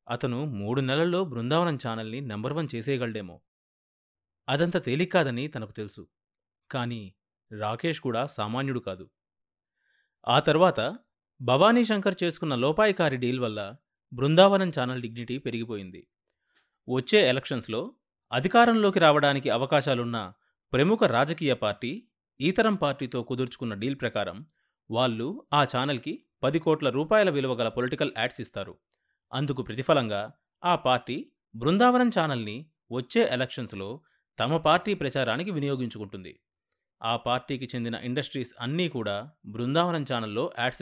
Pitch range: 115-150 Hz